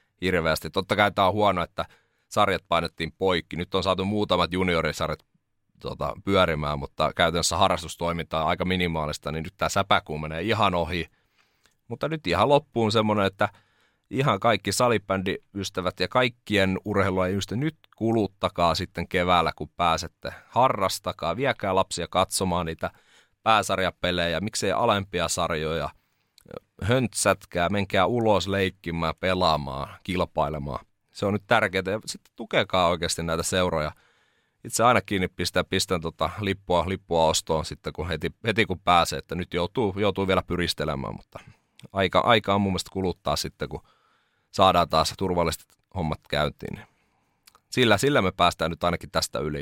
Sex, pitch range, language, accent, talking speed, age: male, 85-100 Hz, Finnish, native, 140 wpm, 30-49